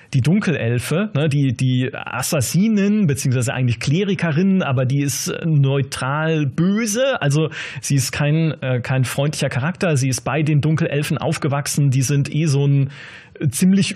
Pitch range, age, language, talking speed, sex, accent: 140-180 Hz, 30-49, German, 140 wpm, male, German